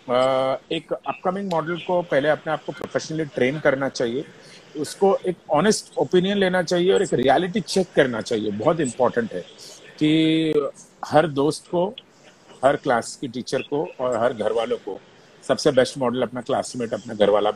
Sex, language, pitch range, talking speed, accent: male, Hindi, 140-185 Hz, 170 wpm, native